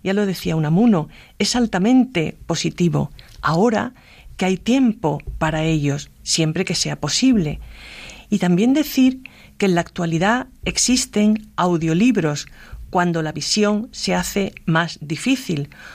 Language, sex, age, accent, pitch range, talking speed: Spanish, female, 40-59, Spanish, 165-235 Hz, 125 wpm